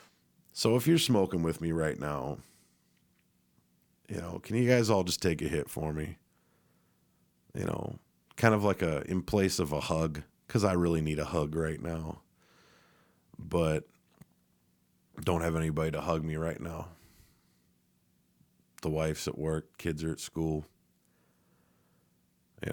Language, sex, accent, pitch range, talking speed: English, male, American, 75-100 Hz, 155 wpm